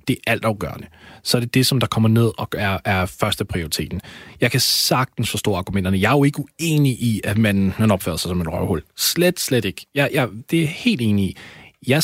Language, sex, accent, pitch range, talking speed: Danish, male, native, 100-140 Hz, 230 wpm